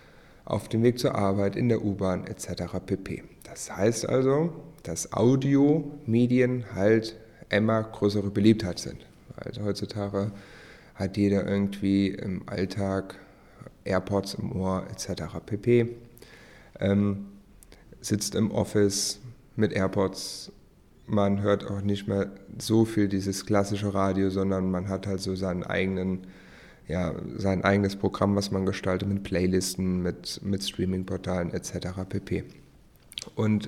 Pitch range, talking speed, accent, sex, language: 95-110 Hz, 125 wpm, German, male, German